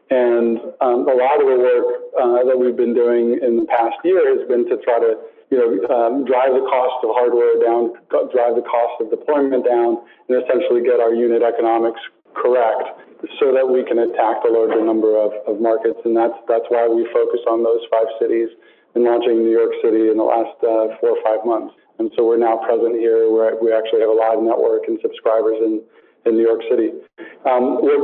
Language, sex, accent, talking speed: English, male, American, 215 wpm